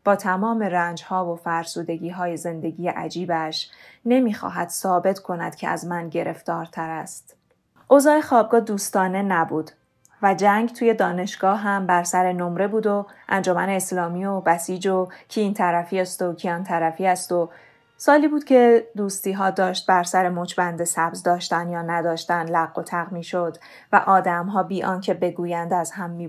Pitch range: 175-205 Hz